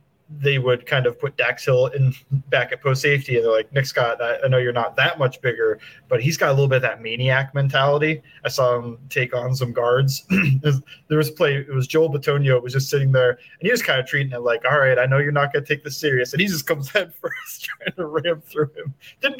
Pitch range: 125-150 Hz